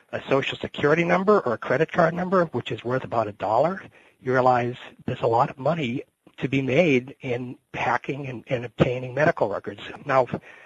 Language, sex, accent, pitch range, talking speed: English, male, American, 120-155 Hz, 190 wpm